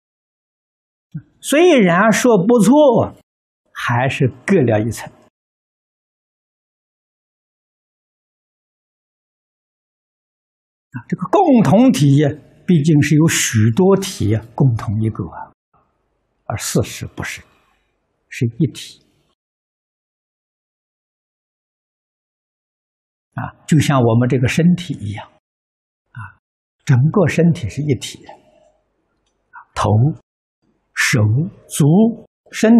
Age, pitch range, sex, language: 60-79, 120-175 Hz, male, Chinese